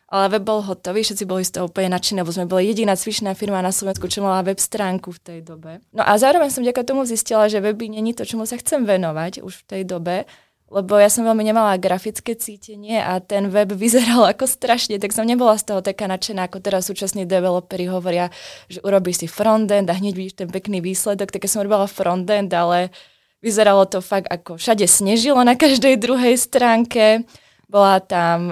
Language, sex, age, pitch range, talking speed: Czech, female, 20-39, 190-220 Hz, 205 wpm